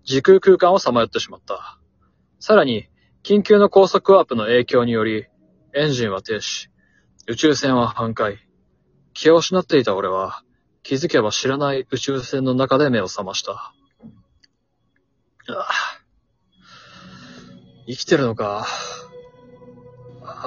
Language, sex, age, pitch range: Japanese, male, 20-39, 120-185 Hz